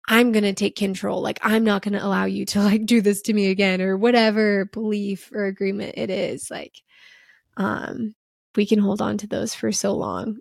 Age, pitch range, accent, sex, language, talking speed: 20-39, 195-230 Hz, American, female, English, 215 wpm